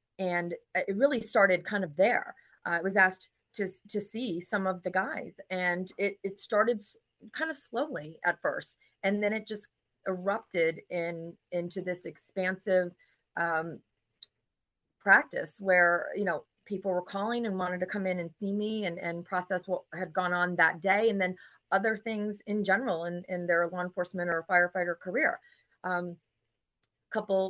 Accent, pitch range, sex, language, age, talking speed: American, 175-200 Hz, female, English, 30-49, 170 wpm